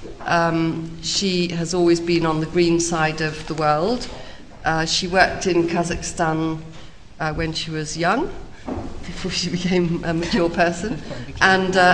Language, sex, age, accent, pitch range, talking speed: English, female, 50-69, British, 150-180 Hz, 150 wpm